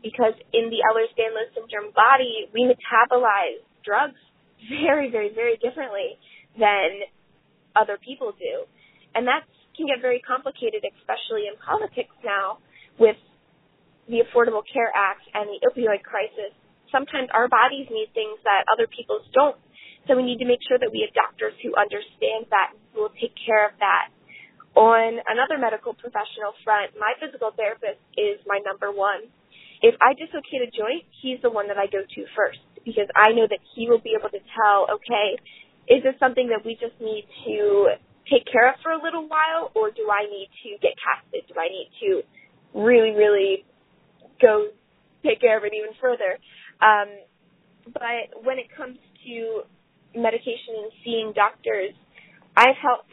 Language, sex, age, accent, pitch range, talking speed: English, female, 20-39, American, 210-315 Hz, 165 wpm